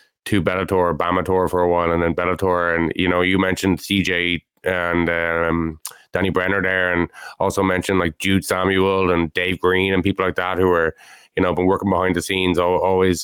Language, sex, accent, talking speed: English, male, Irish, 195 wpm